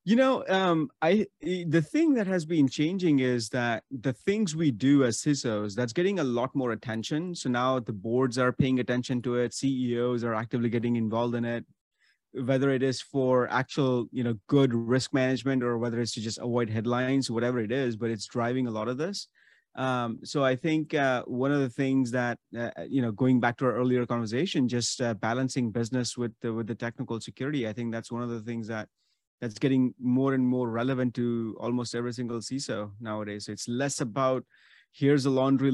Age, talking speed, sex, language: 30-49, 205 wpm, male, English